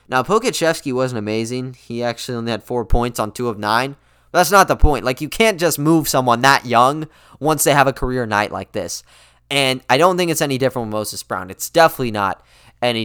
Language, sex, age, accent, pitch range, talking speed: English, male, 10-29, American, 125-175 Hz, 220 wpm